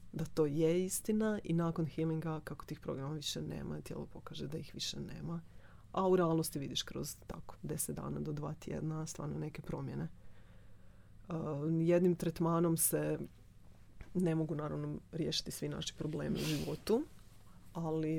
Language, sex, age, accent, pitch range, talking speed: Croatian, female, 30-49, native, 110-170 Hz, 150 wpm